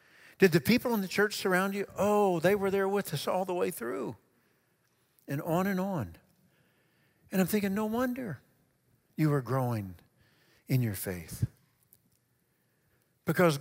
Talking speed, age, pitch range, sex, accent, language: 150 wpm, 50-69, 145-195 Hz, male, American, English